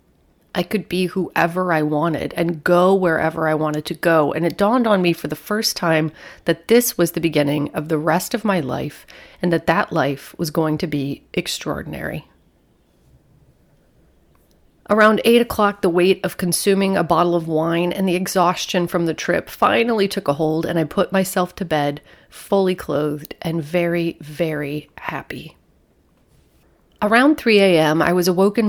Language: English